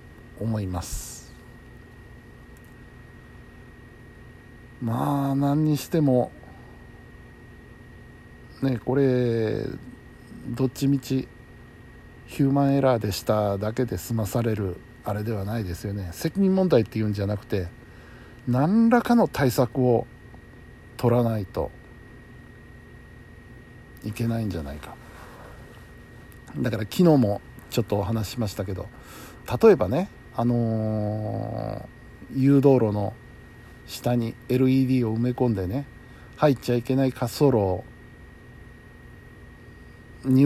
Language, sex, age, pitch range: Japanese, male, 60-79, 110-130 Hz